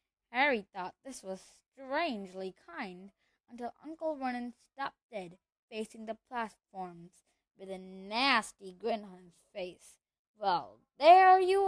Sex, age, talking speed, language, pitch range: female, 20-39, 125 wpm, English, 195-275 Hz